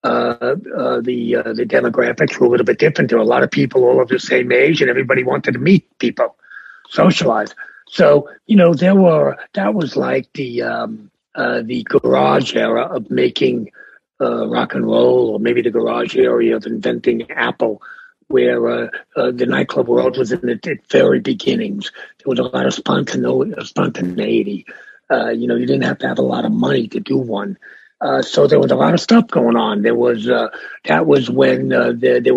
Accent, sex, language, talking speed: American, male, English, 200 wpm